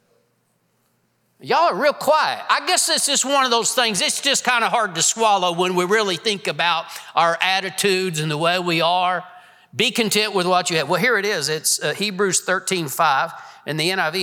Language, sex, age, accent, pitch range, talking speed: English, male, 50-69, American, 160-200 Hz, 200 wpm